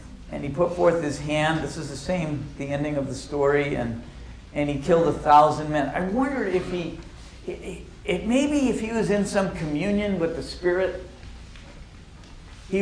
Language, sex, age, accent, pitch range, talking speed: English, male, 50-69, American, 135-195 Hz, 185 wpm